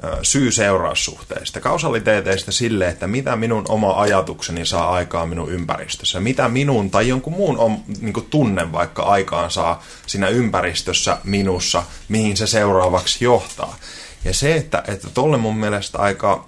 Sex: male